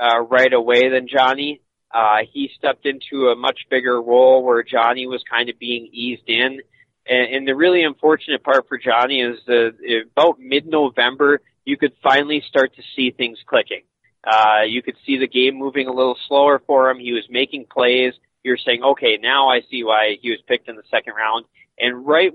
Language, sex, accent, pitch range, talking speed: English, male, American, 115-135 Hz, 195 wpm